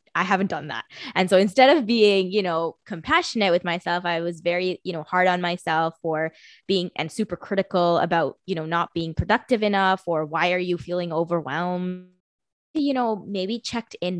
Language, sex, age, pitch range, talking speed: English, female, 20-39, 170-205 Hz, 190 wpm